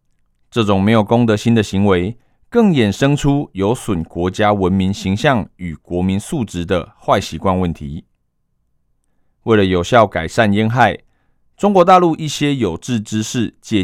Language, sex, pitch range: Chinese, male, 90-125 Hz